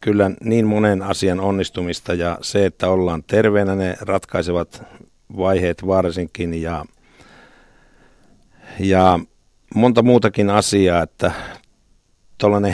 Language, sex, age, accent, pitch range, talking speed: Finnish, male, 50-69, native, 90-105 Hz, 100 wpm